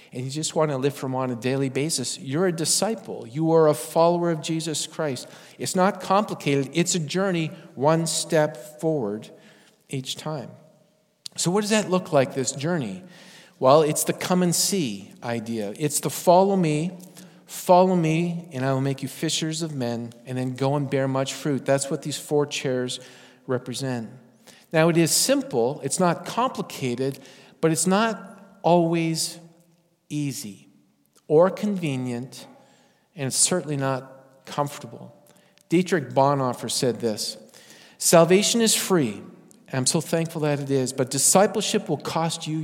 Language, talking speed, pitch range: English, 160 wpm, 135-185 Hz